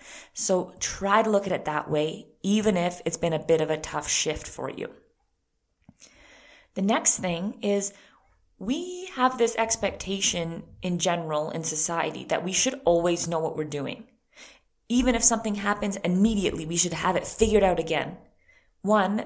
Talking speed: 165 wpm